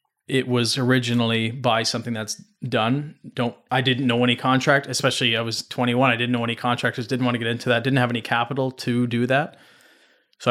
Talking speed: 205 wpm